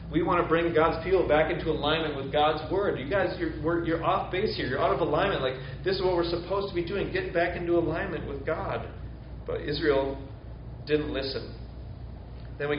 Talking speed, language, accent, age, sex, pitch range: 210 wpm, English, American, 30-49, male, 145-170 Hz